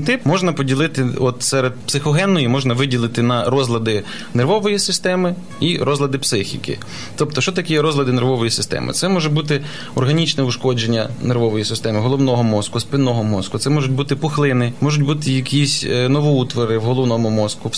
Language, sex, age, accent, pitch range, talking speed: Ukrainian, male, 20-39, native, 115-145 Hz, 150 wpm